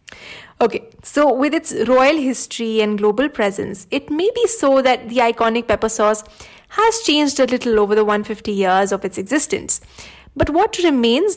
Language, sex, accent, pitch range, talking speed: English, female, Indian, 215-270 Hz, 170 wpm